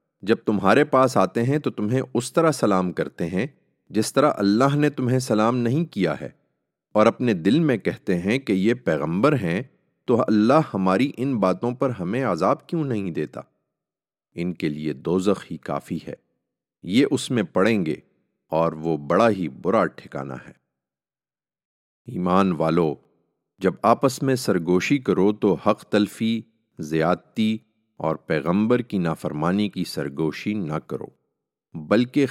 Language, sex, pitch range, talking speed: English, male, 90-120 Hz, 145 wpm